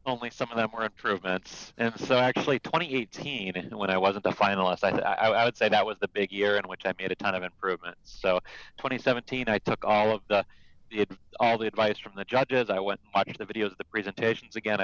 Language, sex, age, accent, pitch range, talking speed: English, male, 30-49, American, 95-115 Hz, 230 wpm